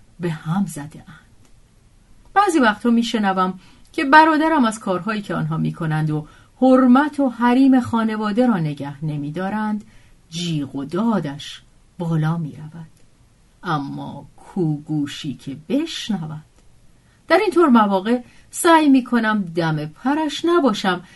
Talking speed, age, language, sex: 125 wpm, 40-59, Persian, female